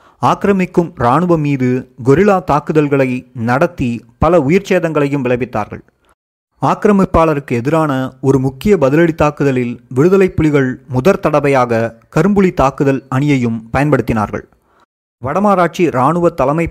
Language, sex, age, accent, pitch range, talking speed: Tamil, male, 30-49, native, 125-160 Hz, 90 wpm